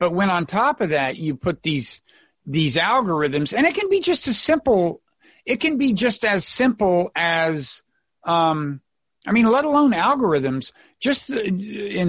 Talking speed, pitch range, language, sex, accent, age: 165 wpm, 150-215 Hz, English, male, American, 50-69